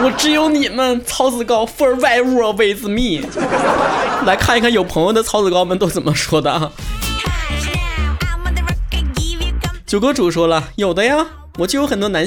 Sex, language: male, Chinese